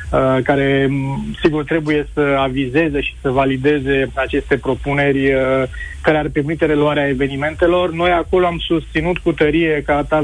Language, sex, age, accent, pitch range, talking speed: Romanian, male, 30-49, native, 140-160 Hz, 135 wpm